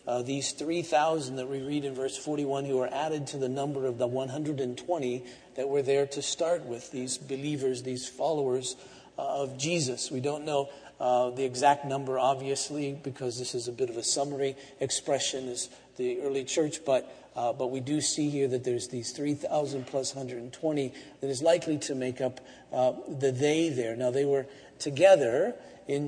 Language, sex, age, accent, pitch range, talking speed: English, male, 50-69, American, 130-145 Hz, 180 wpm